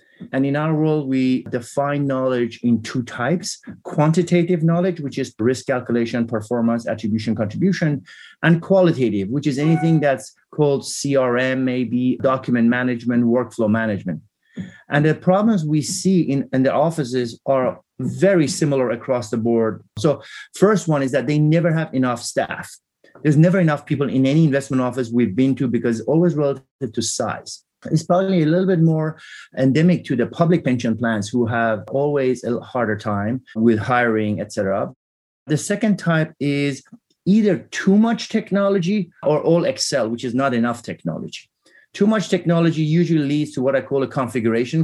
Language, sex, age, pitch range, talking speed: English, male, 30-49, 120-160 Hz, 165 wpm